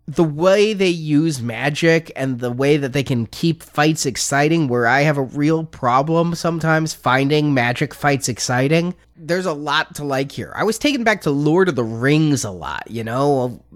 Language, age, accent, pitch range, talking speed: English, 20-39, American, 125-160 Hz, 190 wpm